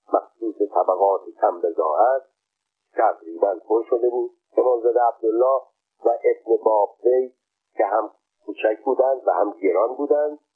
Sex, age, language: male, 50-69, Persian